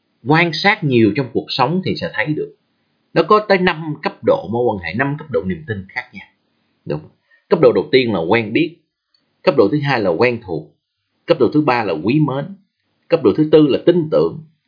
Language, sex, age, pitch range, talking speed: Vietnamese, male, 30-49, 110-175 Hz, 220 wpm